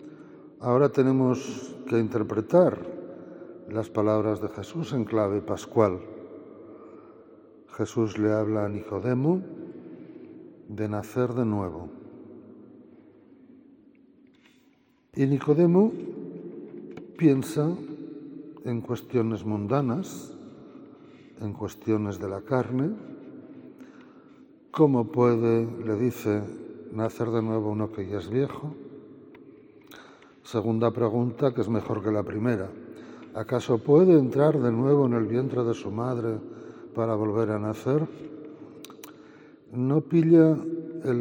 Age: 60-79